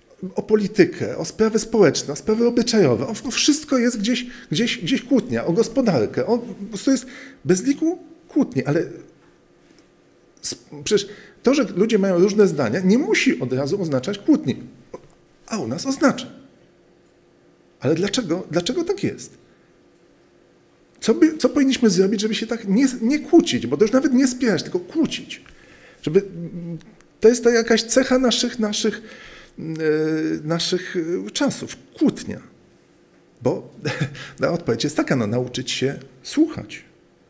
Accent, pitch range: native, 170-250 Hz